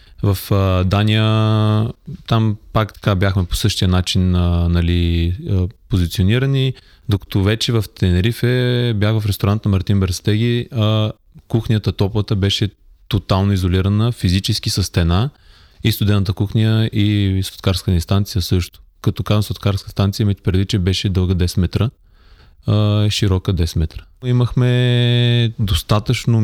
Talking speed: 115 wpm